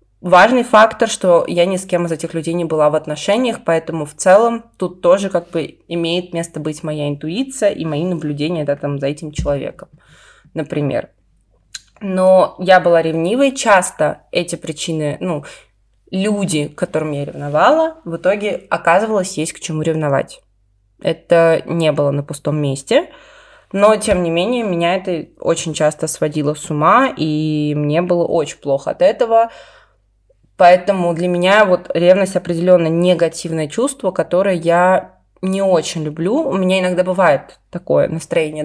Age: 20-39